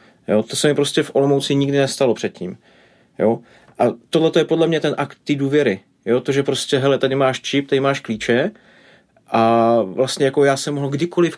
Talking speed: 200 wpm